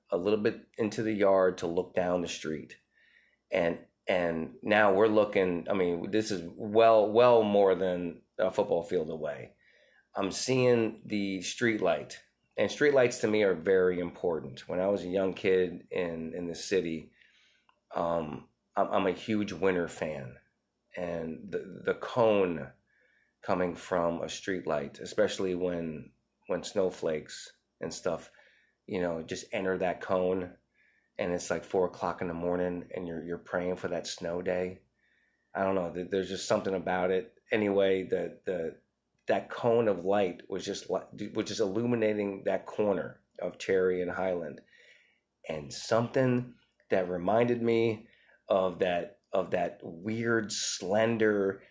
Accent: American